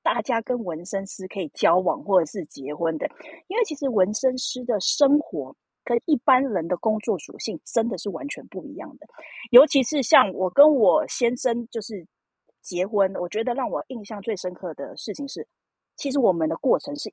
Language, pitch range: Chinese, 205-285 Hz